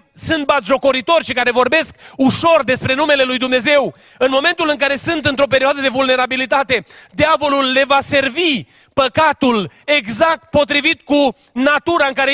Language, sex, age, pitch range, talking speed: Romanian, male, 30-49, 235-295 Hz, 145 wpm